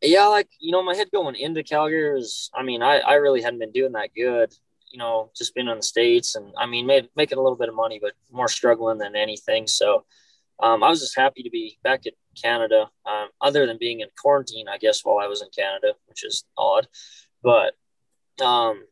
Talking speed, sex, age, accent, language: 225 wpm, male, 20-39, American, English